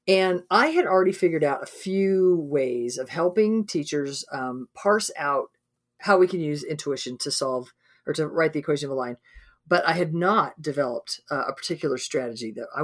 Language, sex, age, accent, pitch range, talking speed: English, female, 40-59, American, 150-200 Hz, 190 wpm